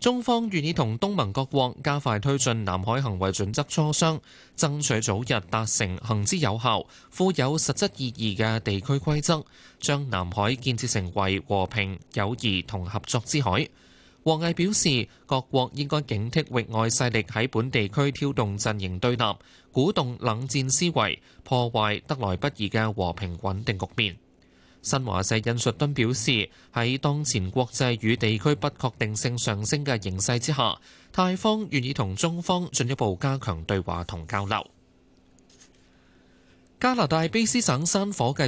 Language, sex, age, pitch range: Chinese, male, 20-39, 105-145 Hz